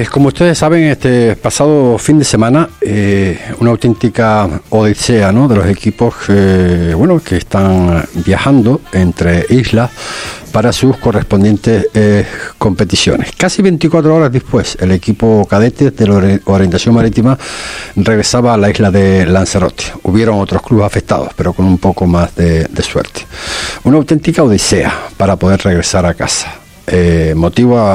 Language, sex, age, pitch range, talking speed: Spanish, male, 60-79, 90-120 Hz, 140 wpm